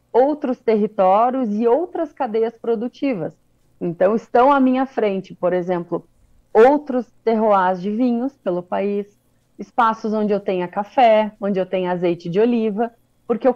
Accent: Brazilian